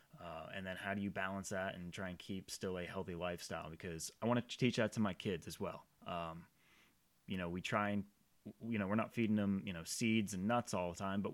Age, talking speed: 30-49, 255 wpm